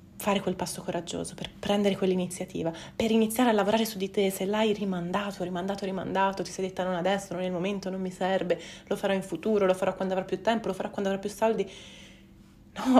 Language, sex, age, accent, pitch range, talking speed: Italian, female, 30-49, native, 180-215 Hz, 220 wpm